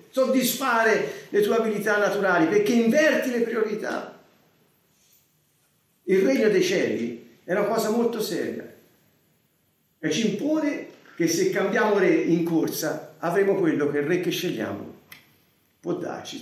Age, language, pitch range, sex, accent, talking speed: 50-69, Italian, 155-230 Hz, male, native, 130 wpm